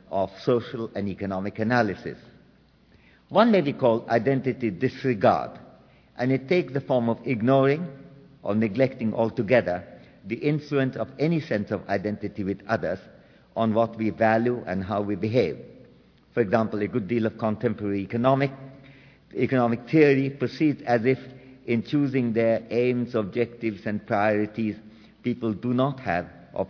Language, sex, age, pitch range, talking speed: English, male, 50-69, 105-130 Hz, 140 wpm